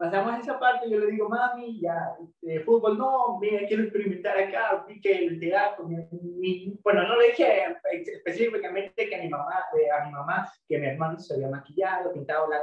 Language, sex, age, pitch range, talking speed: Spanish, male, 20-39, 165-230 Hz, 195 wpm